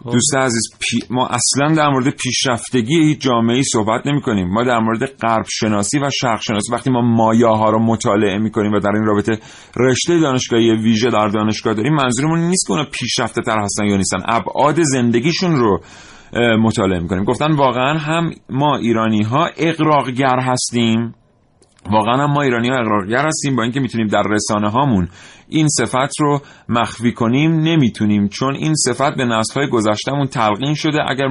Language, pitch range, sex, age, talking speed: Persian, 105-135 Hz, male, 40-59, 170 wpm